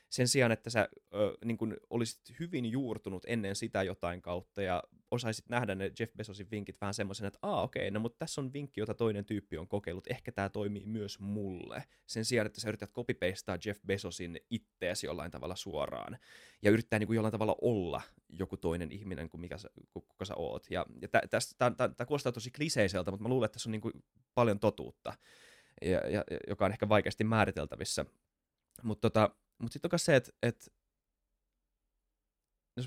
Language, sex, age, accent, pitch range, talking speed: Finnish, male, 20-39, native, 95-115 Hz, 175 wpm